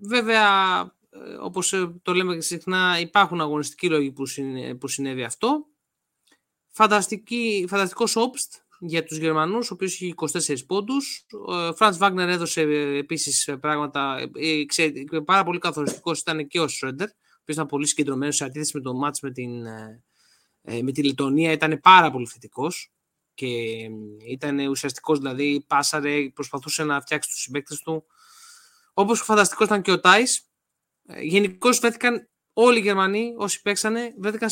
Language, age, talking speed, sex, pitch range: Greek, 20-39, 135 wpm, male, 150-205 Hz